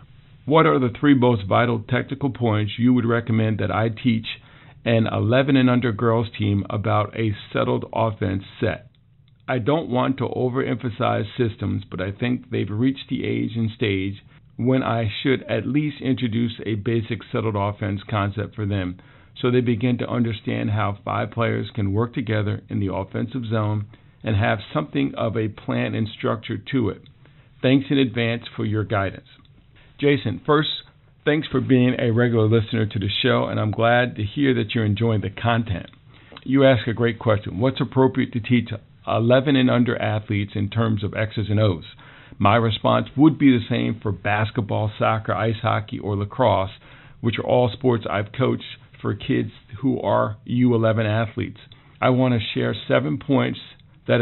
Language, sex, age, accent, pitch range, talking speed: English, male, 50-69, American, 110-130 Hz, 175 wpm